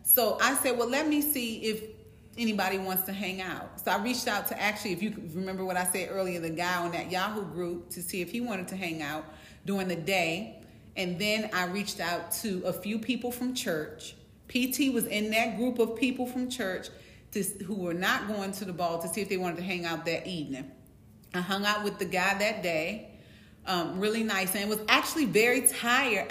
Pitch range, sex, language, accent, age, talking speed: 175-225 Hz, female, English, American, 30-49, 220 wpm